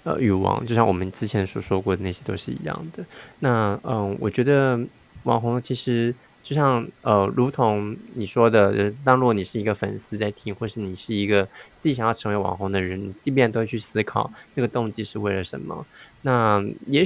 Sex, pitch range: male, 100-120 Hz